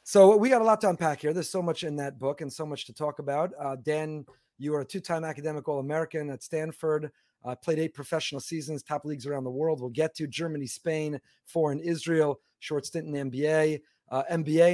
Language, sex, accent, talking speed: English, male, American, 225 wpm